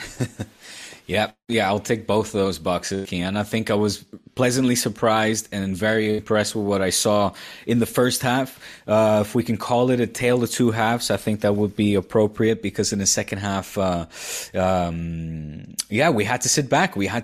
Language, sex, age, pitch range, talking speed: English, male, 20-39, 100-120 Hz, 205 wpm